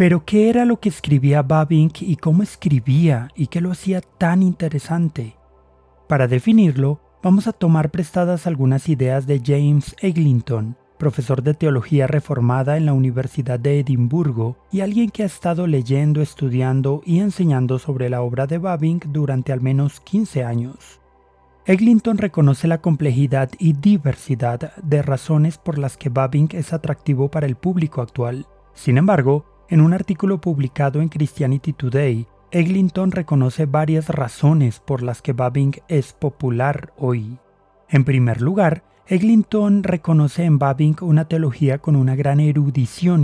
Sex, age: male, 30-49